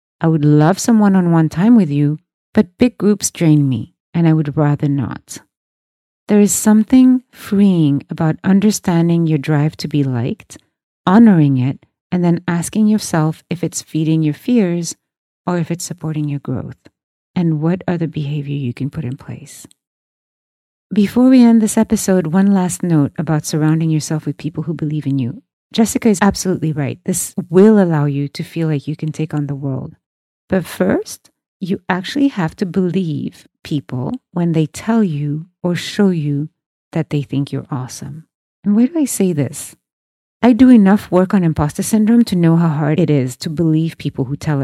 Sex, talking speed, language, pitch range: female, 180 wpm, English, 150-190 Hz